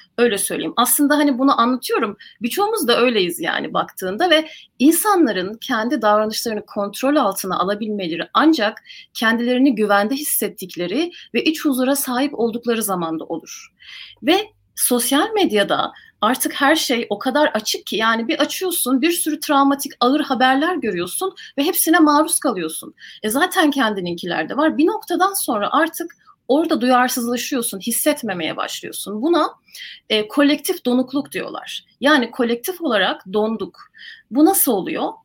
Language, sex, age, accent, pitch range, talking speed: Turkish, female, 30-49, native, 210-310 Hz, 130 wpm